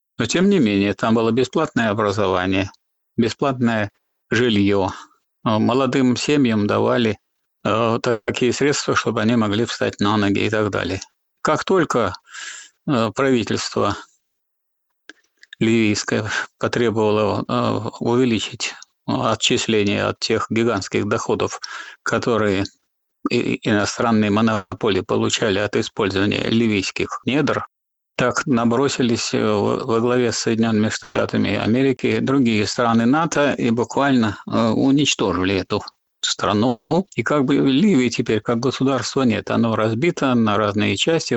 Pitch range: 105-130 Hz